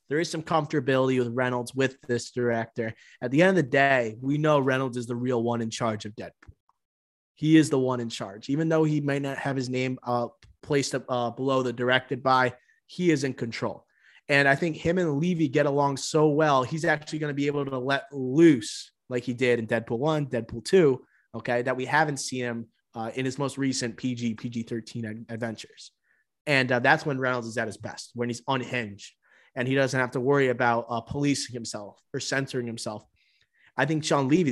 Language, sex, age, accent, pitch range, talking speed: English, male, 30-49, American, 120-145 Hz, 210 wpm